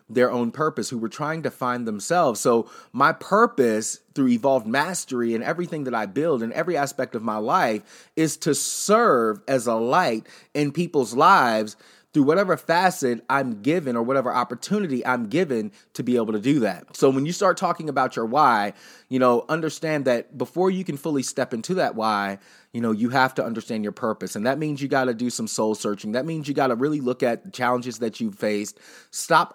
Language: English